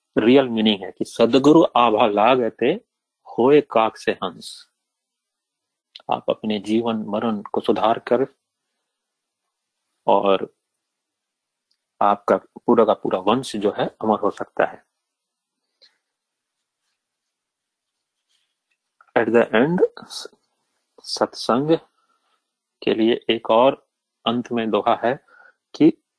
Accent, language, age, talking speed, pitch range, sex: native, Hindi, 40-59, 100 wpm, 110-150 Hz, male